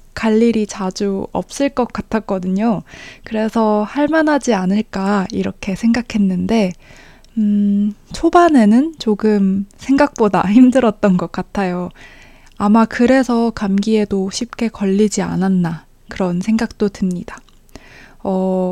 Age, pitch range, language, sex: 20-39, 195-250 Hz, Korean, female